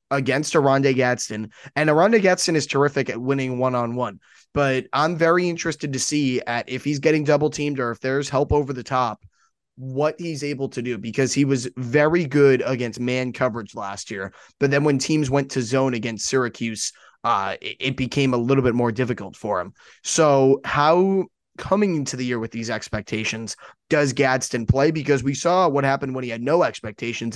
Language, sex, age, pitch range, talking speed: English, male, 20-39, 120-145 Hz, 190 wpm